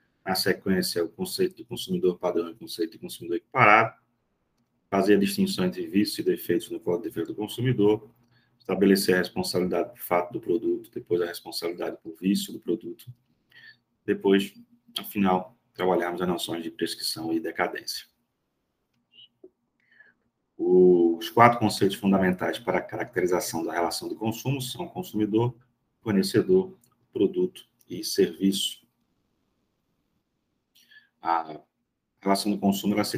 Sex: male